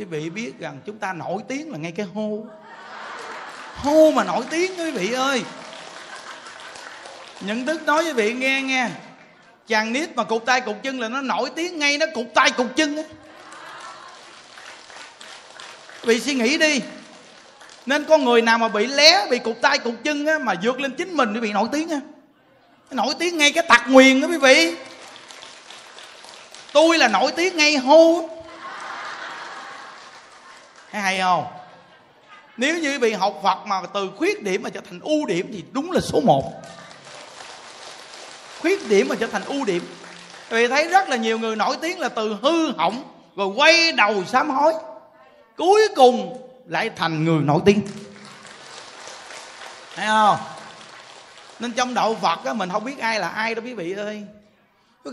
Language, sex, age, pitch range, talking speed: Vietnamese, male, 20-39, 215-300 Hz, 170 wpm